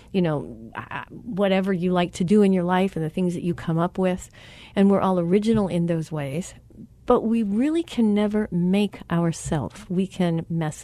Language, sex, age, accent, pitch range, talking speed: English, female, 40-59, American, 170-225 Hz, 195 wpm